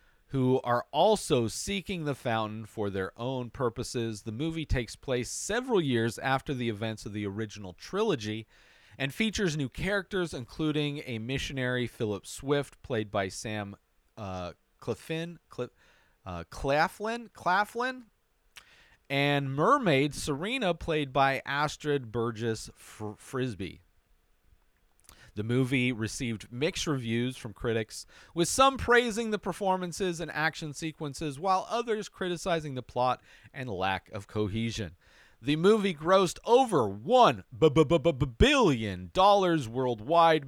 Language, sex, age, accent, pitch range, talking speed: English, male, 40-59, American, 110-160 Hz, 115 wpm